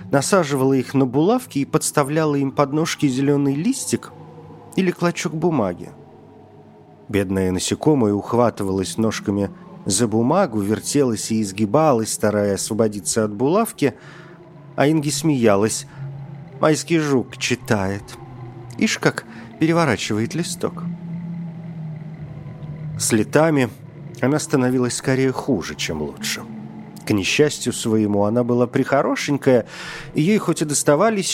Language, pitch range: Russian, 110-155 Hz